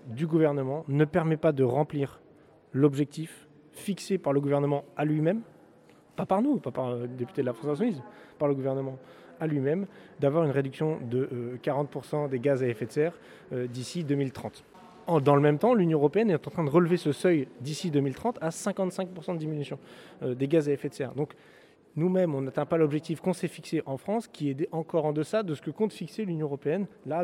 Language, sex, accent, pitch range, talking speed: French, male, French, 125-155 Hz, 205 wpm